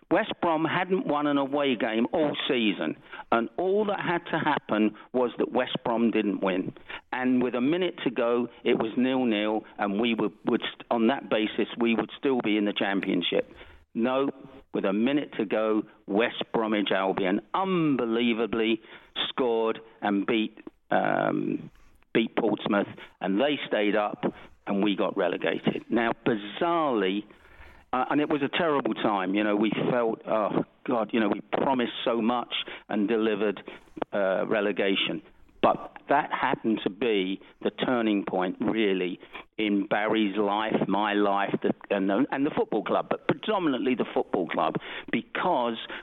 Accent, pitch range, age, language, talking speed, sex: British, 105-135 Hz, 50-69, English, 155 wpm, male